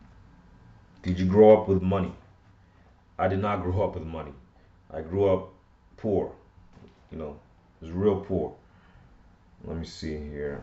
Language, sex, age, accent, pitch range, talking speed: English, male, 30-49, American, 85-95 Hz, 145 wpm